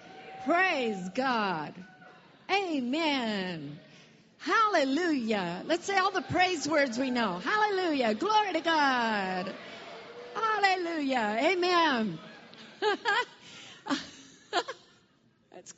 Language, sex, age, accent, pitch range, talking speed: English, female, 40-59, American, 220-320 Hz, 70 wpm